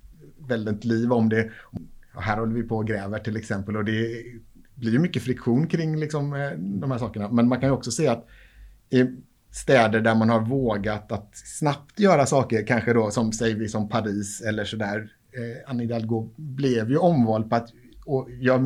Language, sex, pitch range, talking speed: Swedish, male, 110-135 Hz, 185 wpm